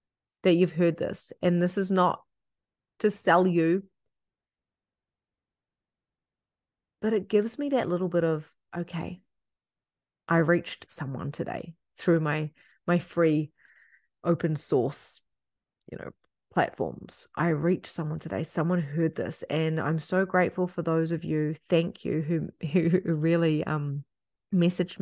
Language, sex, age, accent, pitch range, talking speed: English, female, 30-49, Australian, 160-180 Hz, 130 wpm